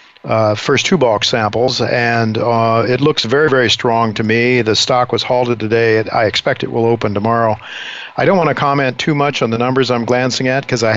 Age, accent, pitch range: 50-69, American, 115-130 Hz